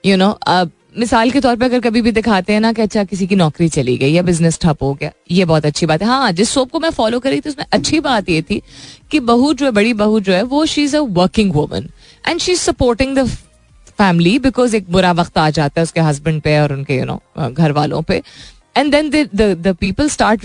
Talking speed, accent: 245 wpm, native